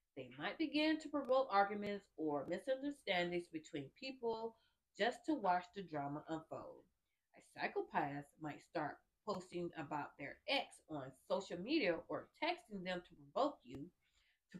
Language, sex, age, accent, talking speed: English, female, 40-59, American, 140 wpm